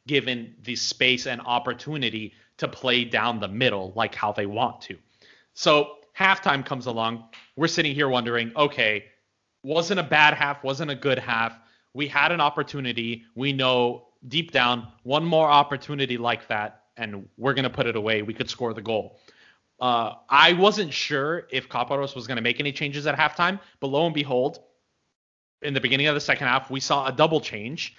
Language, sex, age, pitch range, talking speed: English, male, 30-49, 120-150 Hz, 185 wpm